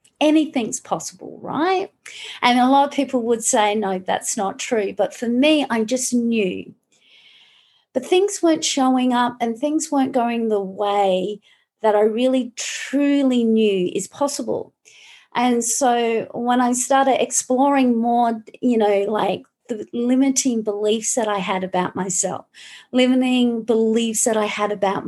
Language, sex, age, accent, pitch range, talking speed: English, female, 40-59, Australian, 210-260 Hz, 150 wpm